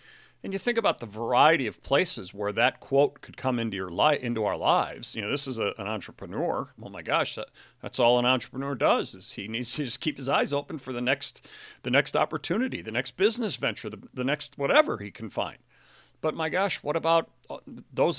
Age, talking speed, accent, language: 40-59, 220 wpm, American, English